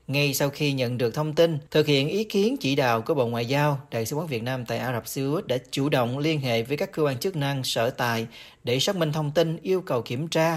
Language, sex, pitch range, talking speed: Vietnamese, male, 125-160 Hz, 280 wpm